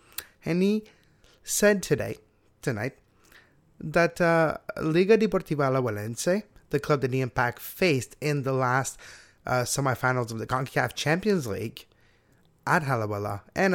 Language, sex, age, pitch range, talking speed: English, male, 20-39, 125-180 Hz, 130 wpm